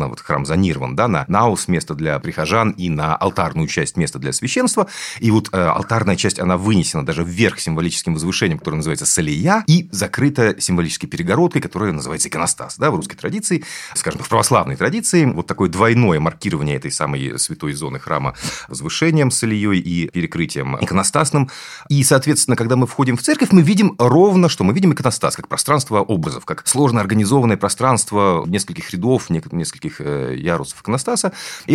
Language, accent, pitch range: Russian, native, 90-140 Hz